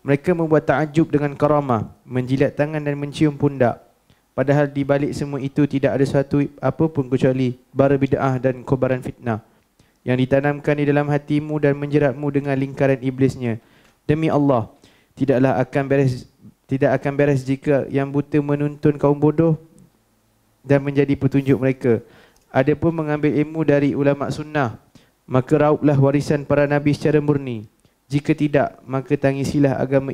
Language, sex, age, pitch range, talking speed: Malay, male, 20-39, 135-150 Hz, 145 wpm